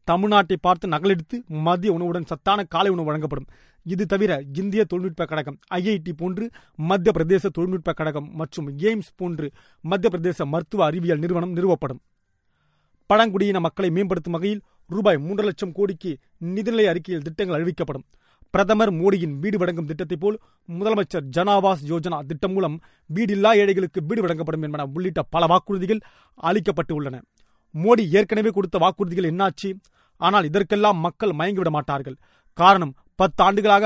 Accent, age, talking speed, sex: native, 30-49, 130 wpm, male